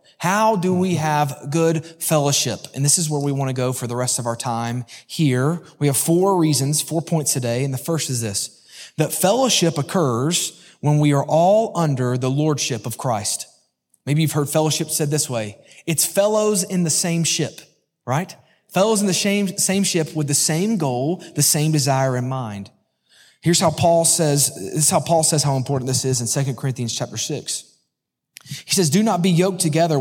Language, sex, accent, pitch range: English, male, American, 135-175 Hz